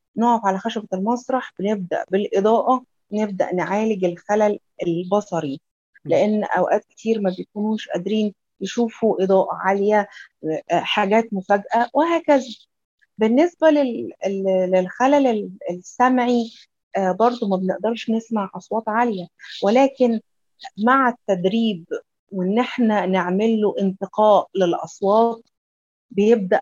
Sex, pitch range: female, 190-230 Hz